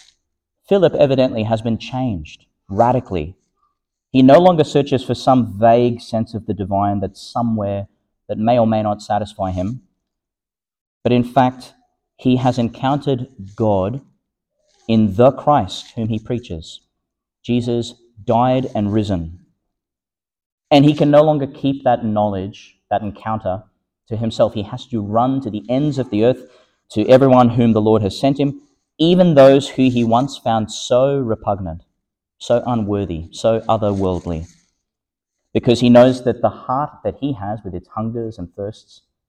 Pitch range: 100-130 Hz